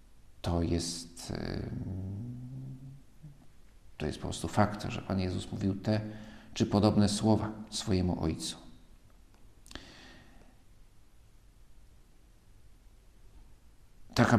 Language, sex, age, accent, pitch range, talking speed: Polish, male, 50-69, native, 100-115 Hz, 70 wpm